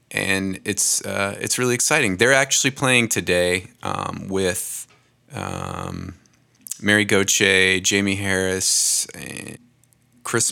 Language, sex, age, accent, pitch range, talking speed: English, male, 30-49, American, 95-110 Hz, 110 wpm